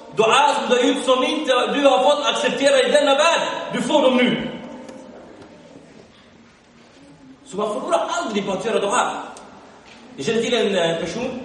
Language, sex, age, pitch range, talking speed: Swedish, male, 30-49, 195-255 Hz, 170 wpm